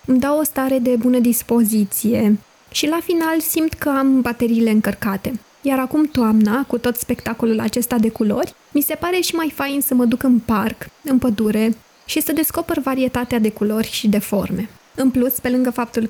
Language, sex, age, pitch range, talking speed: Romanian, female, 20-39, 225-280 Hz, 190 wpm